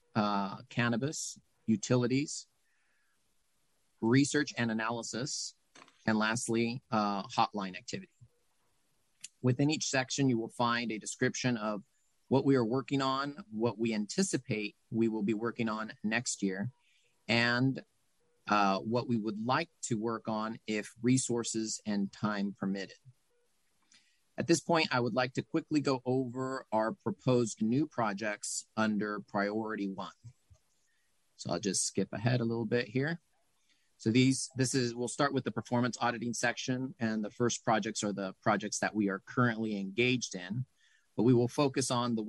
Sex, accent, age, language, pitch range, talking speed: male, American, 40-59, English, 105-125 Hz, 150 wpm